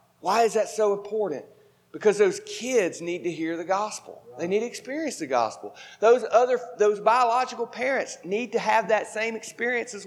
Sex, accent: male, American